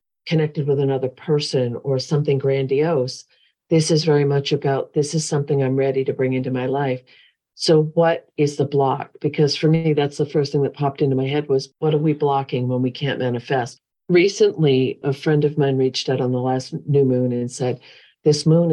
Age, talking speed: 50-69, 205 wpm